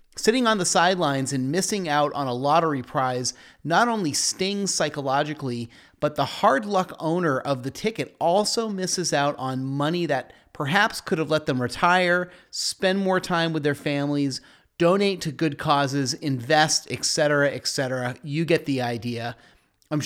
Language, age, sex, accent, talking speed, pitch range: English, 30-49, male, American, 160 wpm, 130-175 Hz